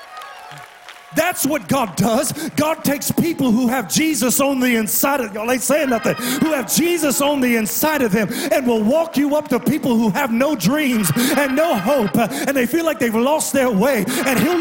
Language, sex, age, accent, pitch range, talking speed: English, male, 30-49, American, 245-310 Hz, 205 wpm